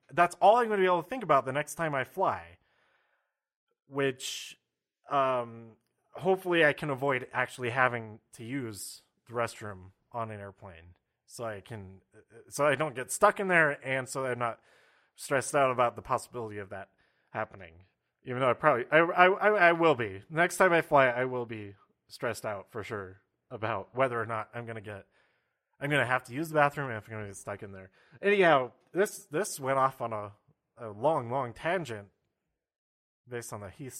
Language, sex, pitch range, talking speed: English, male, 115-155 Hz, 195 wpm